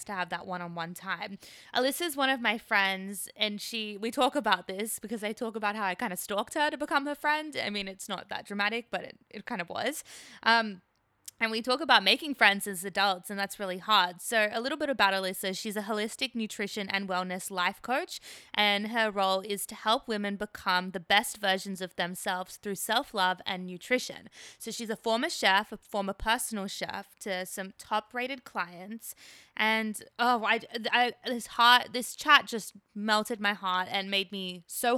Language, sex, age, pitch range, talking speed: English, female, 20-39, 190-230 Hz, 200 wpm